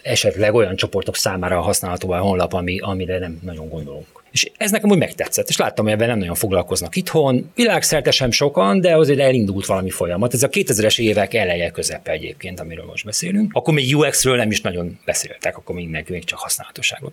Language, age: Hungarian, 30-49